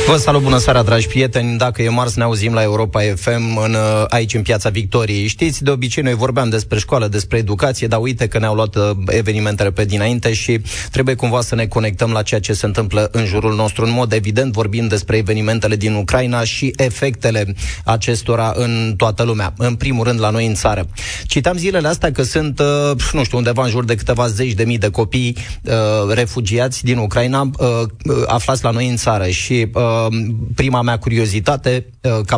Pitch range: 110-135 Hz